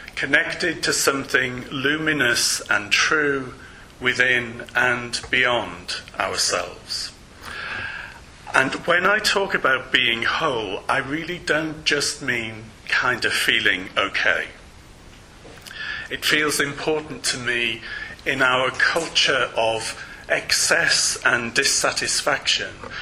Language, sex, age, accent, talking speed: English, male, 40-59, British, 100 wpm